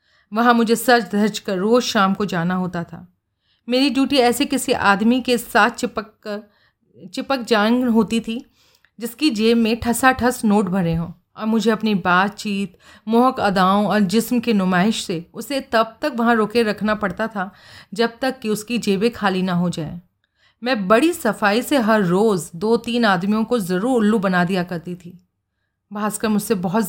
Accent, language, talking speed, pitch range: native, Hindi, 175 wpm, 190-240 Hz